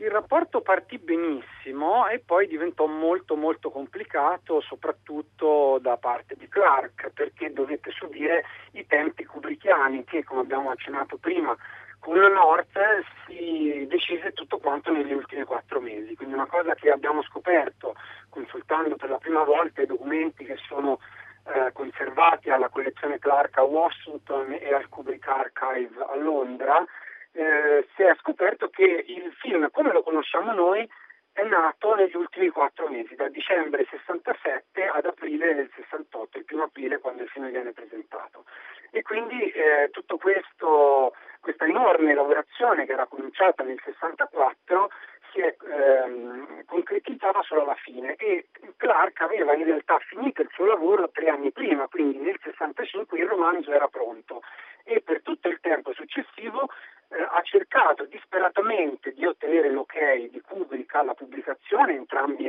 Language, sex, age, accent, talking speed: Italian, male, 50-69, native, 145 wpm